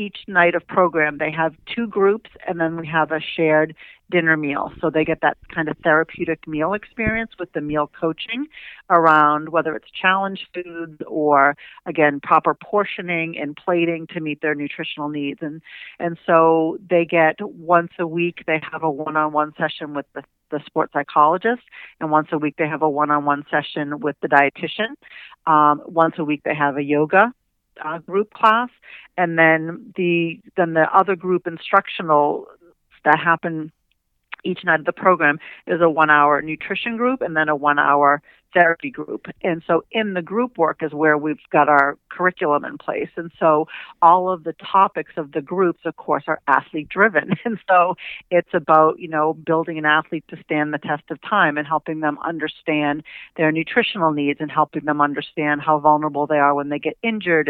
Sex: female